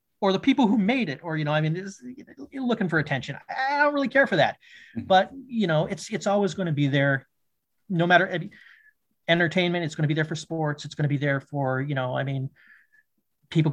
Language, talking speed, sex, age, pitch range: English, 230 wpm, male, 30-49, 140-175 Hz